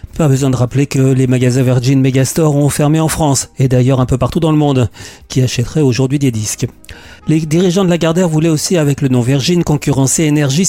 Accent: French